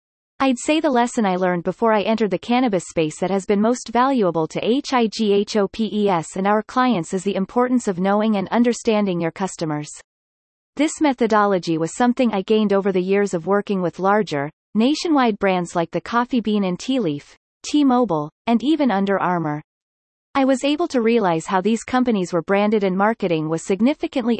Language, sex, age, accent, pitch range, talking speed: English, female, 30-49, American, 180-240 Hz, 175 wpm